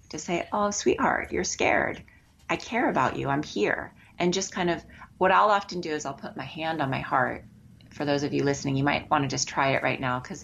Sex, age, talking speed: female, 30-49, 240 wpm